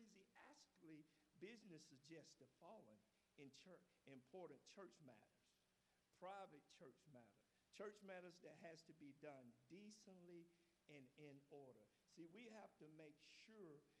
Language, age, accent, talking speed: English, 50-69, American, 120 wpm